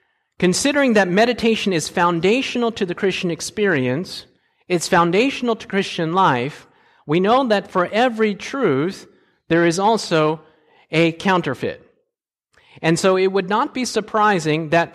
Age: 50-69